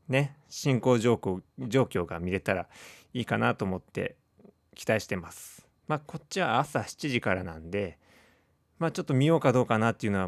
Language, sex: Japanese, male